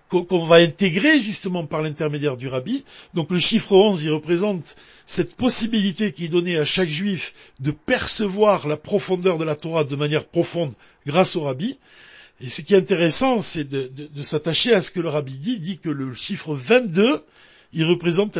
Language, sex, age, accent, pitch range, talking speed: French, male, 60-79, French, 155-200 Hz, 190 wpm